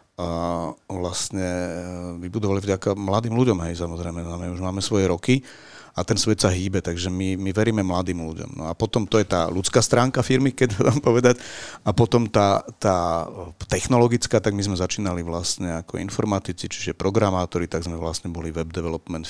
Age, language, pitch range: 40-59, Slovak, 90-110 Hz